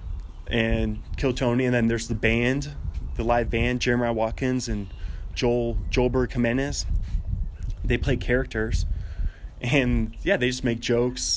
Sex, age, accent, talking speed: male, 20-39, American, 135 wpm